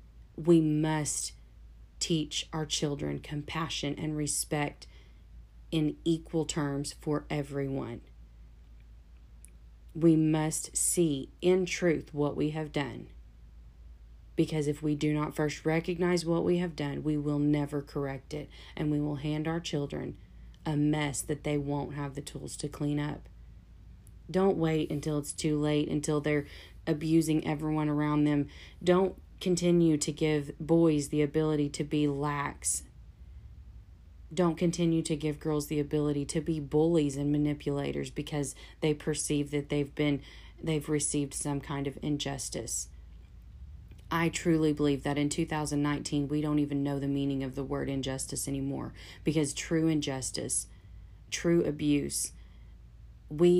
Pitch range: 140-155 Hz